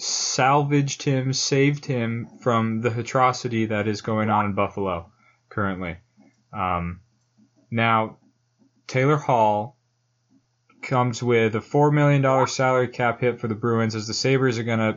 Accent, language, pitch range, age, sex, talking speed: American, English, 110-135 Hz, 20-39, male, 140 wpm